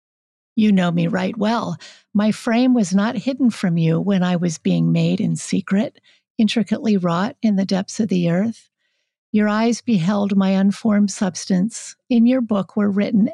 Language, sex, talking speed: English, female, 170 wpm